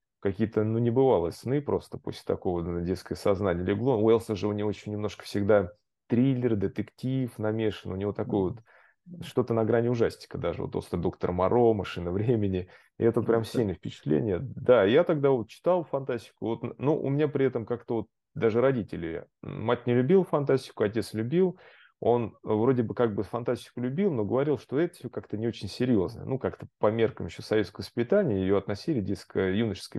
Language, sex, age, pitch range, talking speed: Russian, male, 30-49, 105-130 Hz, 180 wpm